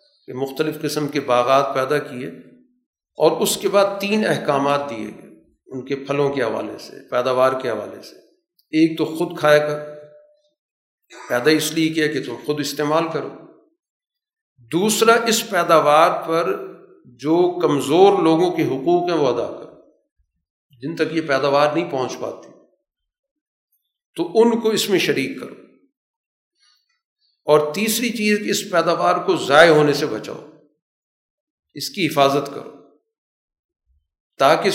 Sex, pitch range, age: male, 145-210 Hz, 50-69